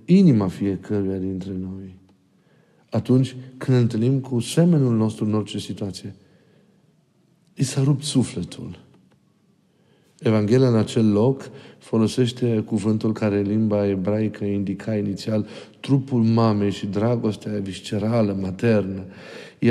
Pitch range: 100-125 Hz